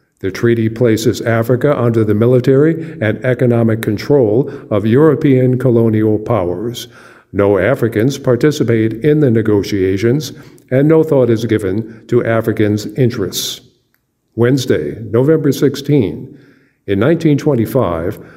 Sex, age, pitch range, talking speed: male, 50-69, 110-140 Hz, 110 wpm